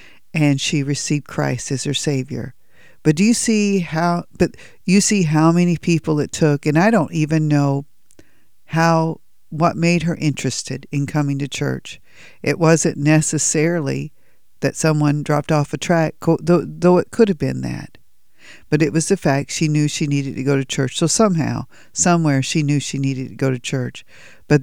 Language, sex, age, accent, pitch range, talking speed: English, female, 50-69, American, 135-165 Hz, 185 wpm